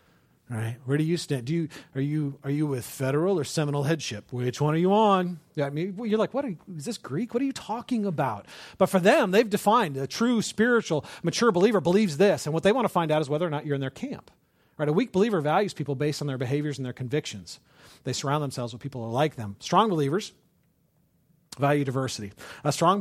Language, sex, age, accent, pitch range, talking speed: English, male, 40-59, American, 135-205 Hz, 235 wpm